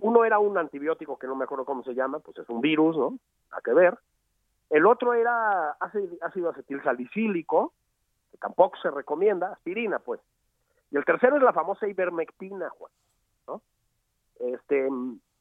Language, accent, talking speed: Spanish, Mexican, 160 wpm